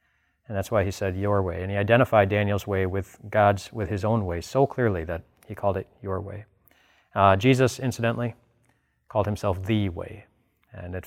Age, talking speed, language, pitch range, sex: 30-49, 190 wpm, English, 90-115 Hz, male